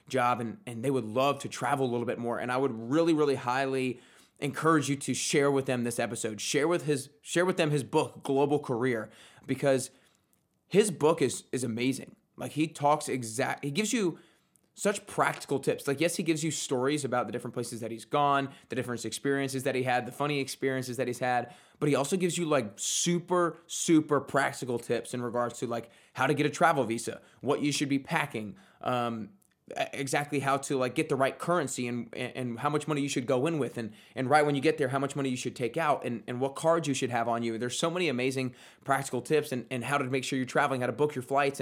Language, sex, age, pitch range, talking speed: English, male, 20-39, 120-145 Hz, 235 wpm